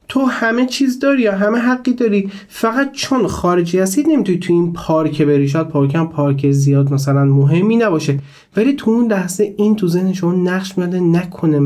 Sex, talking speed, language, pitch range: male, 180 wpm, Persian, 130-180 Hz